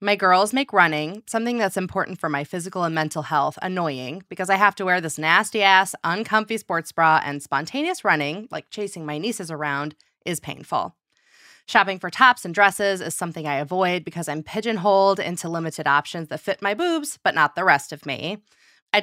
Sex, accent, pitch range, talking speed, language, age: female, American, 155-200 Hz, 190 wpm, English, 20-39